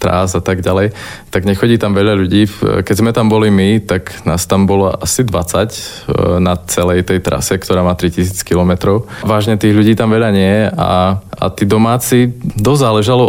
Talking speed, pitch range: 185 wpm, 90-105 Hz